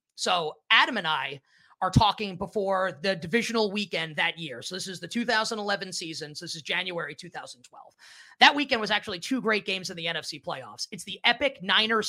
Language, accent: English, American